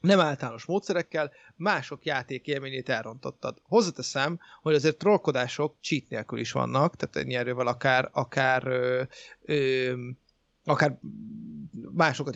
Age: 30-49